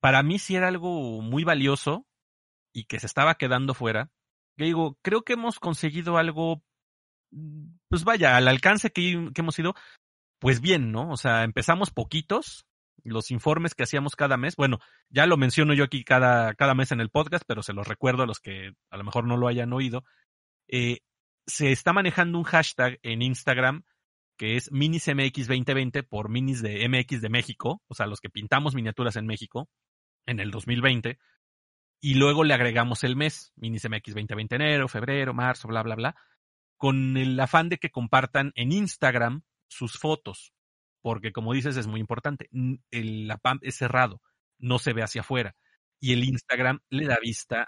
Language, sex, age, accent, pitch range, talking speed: Spanish, male, 40-59, Mexican, 115-150 Hz, 175 wpm